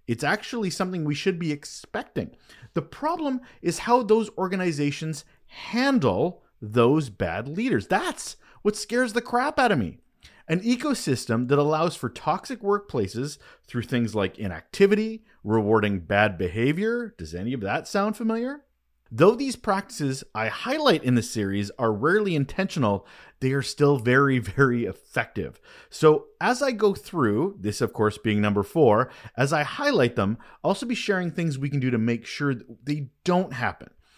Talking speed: 160 wpm